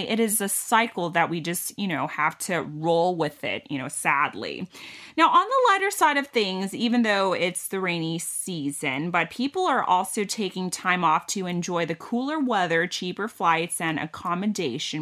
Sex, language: female, Thai